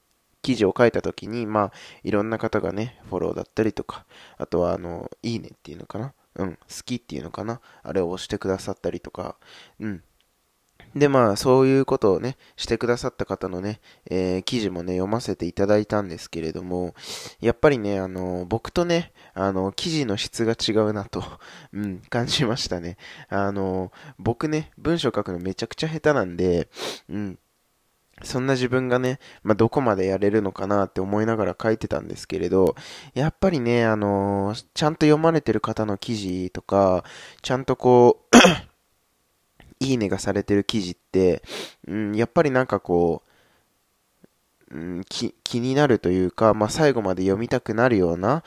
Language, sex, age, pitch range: Japanese, male, 20-39, 95-120 Hz